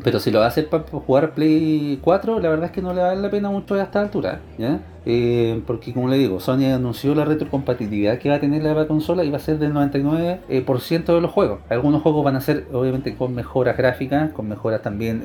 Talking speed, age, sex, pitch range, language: 245 wpm, 40-59, male, 120-155 Hz, Spanish